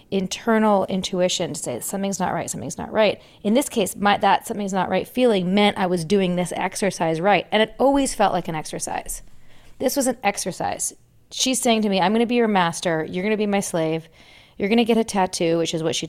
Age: 30-49